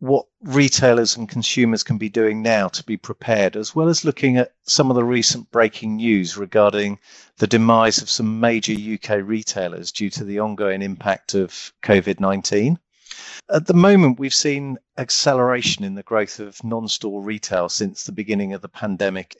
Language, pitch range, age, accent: English, 100-120 Hz, 40-59, British